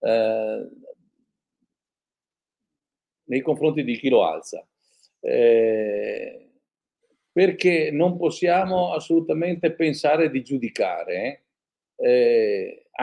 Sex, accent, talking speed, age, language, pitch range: male, native, 75 wpm, 50-69, Italian, 160-265 Hz